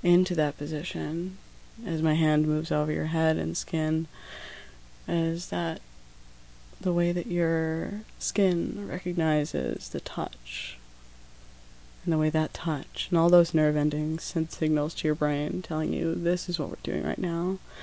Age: 20-39